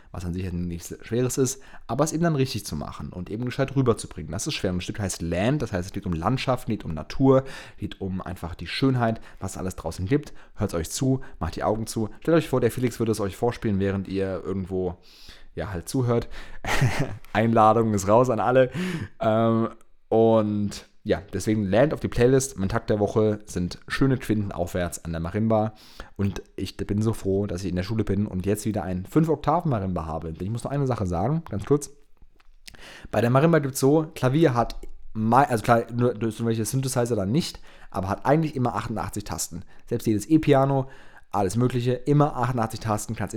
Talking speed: 200 wpm